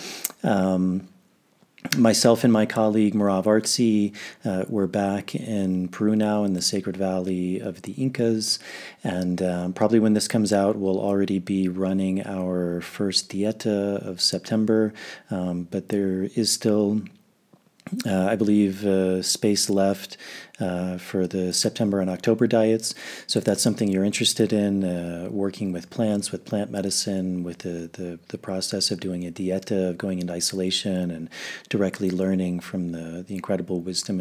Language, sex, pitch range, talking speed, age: English, male, 90-110 Hz, 155 wpm, 30-49